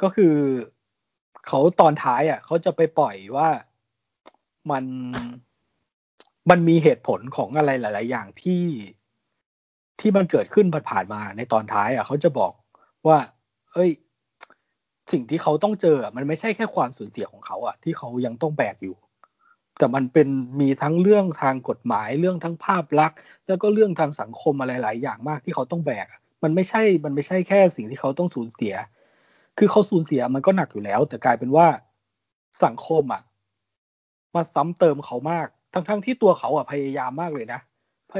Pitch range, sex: 130-180 Hz, male